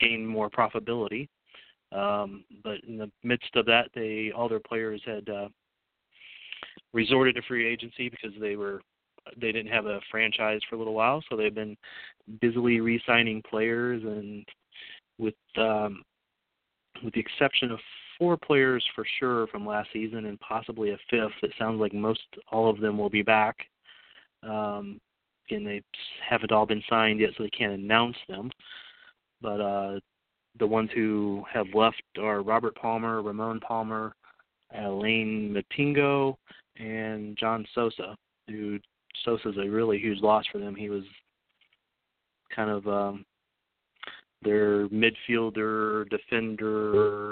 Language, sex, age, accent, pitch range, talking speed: English, male, 30-49, American, 105-115 Hz, 140 wpm